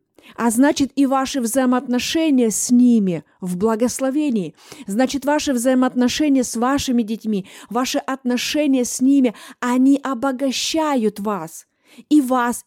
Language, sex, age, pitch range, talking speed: Russian, female, 30-49, 235-275 Hz, 115 wpm